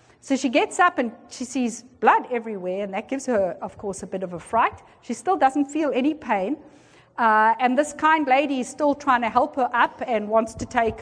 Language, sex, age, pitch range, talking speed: English, female, 50-69, 230-295 Hz, 230 wpm